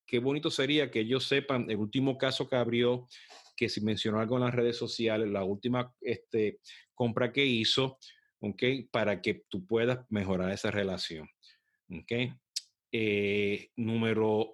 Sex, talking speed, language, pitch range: male, 155 wpm, Spanish, 105-135 Hz